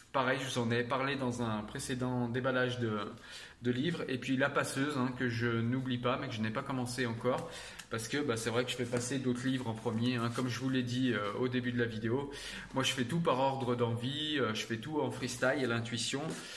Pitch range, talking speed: 120-150 Hz, 245 wpm